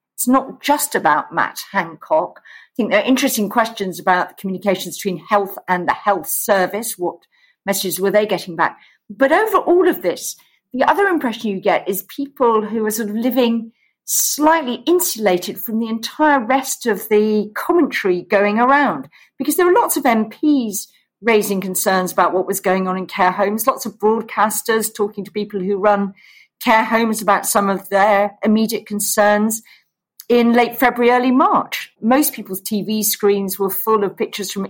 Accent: British